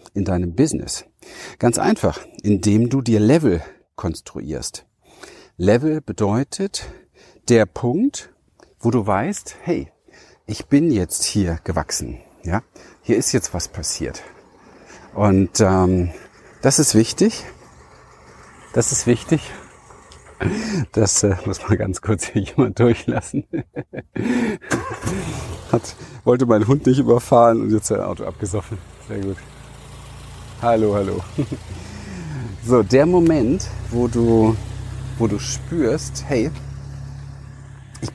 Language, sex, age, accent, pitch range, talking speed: German, male, 50-69, German, 100-125 Hz, 110 wpm